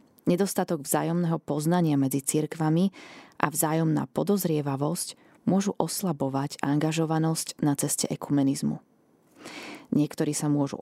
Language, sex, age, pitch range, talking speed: Slovak, female, 20-39, 150-190 Hz, 95 wpm